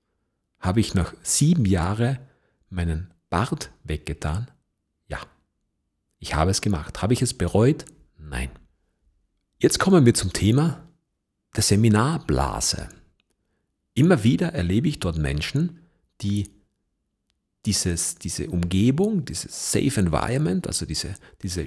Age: 40-59